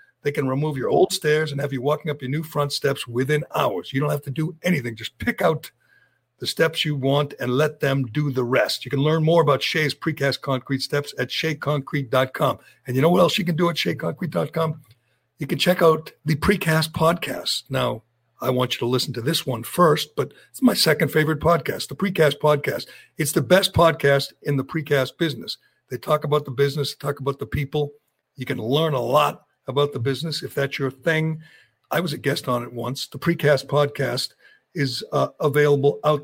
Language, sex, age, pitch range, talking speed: English, male, 60-79, 135-155 Hz, 210 wpm